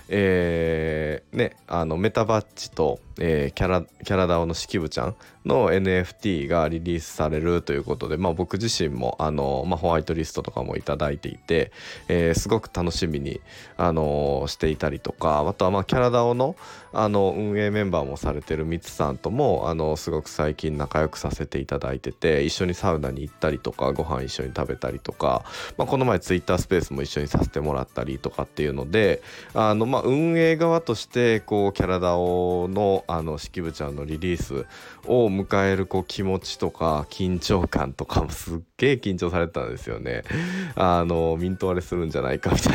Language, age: Japanese, 20-39